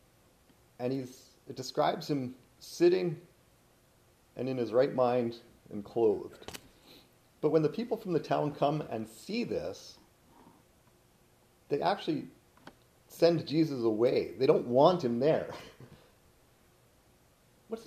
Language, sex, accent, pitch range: English, male, American, 115-160 Hz